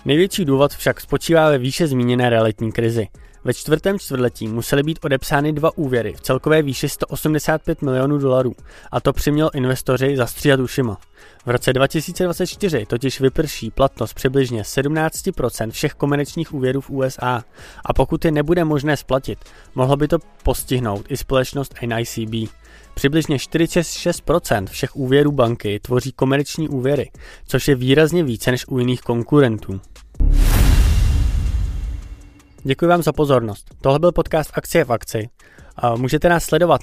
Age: 20-39